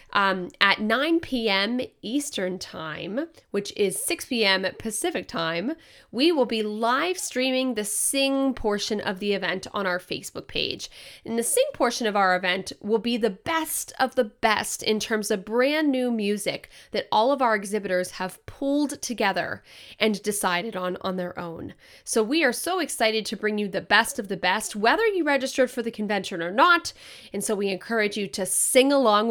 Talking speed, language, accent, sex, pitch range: 180 wpm, English, American, female, 190-250 Hz